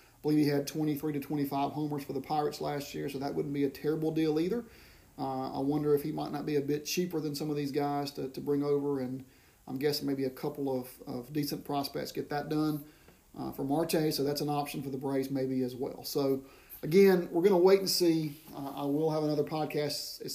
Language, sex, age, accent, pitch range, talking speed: English, male, 30-49, American, 140-155 Hz, 240 wpm